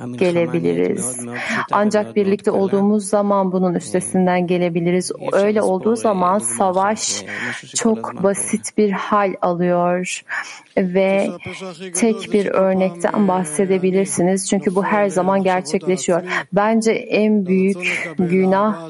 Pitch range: 175-200 Hz